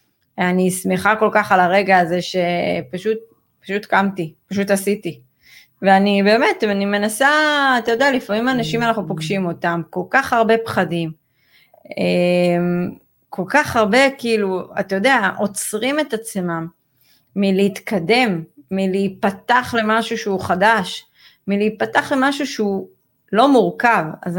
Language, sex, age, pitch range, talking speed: Hebrew, female, 30-49, 180-220 Hz, 115 wpm